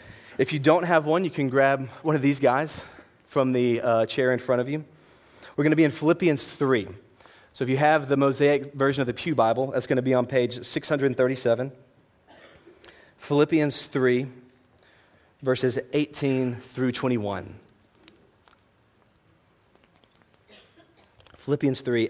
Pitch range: 115-150 Hz